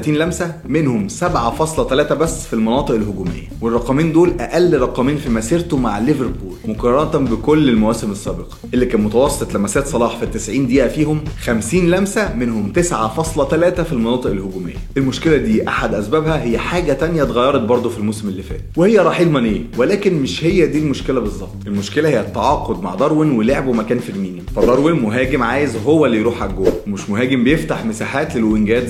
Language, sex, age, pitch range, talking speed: Arabic, male, 20-39, 110-145 Hz, 165 wpm